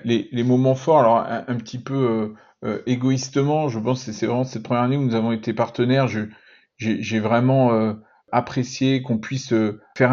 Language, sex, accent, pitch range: French, male, French, 110-130 Hz